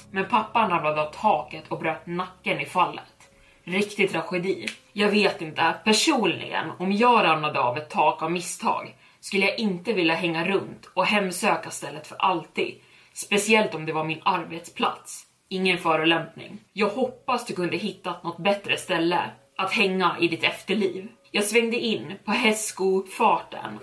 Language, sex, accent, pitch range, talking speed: Swedish, female, native, 165-205 Hz, 155 wpm